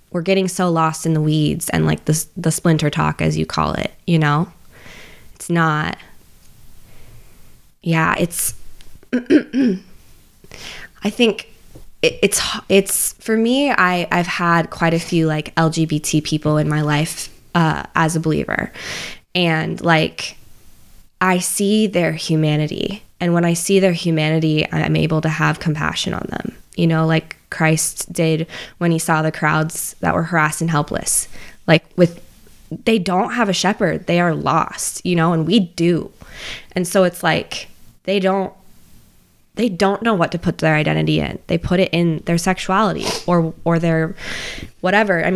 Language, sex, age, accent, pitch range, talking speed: English, female, 20-39, American, 155-190 Hz, 160 wpm